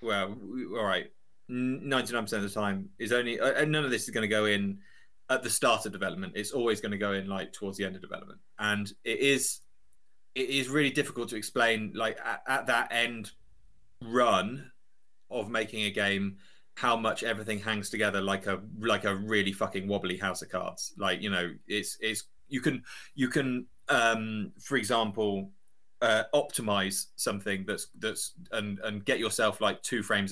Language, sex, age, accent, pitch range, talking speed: English, male, 20-39, British, 100-120 Hz, 180 wpm